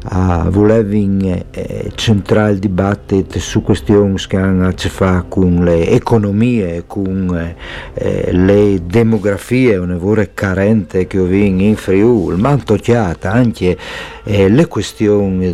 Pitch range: 90-110 Hz